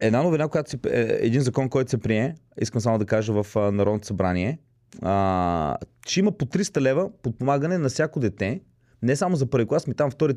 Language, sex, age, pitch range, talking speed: Bulgarian, male, 30-49, 115-150 Hz, 190 wpm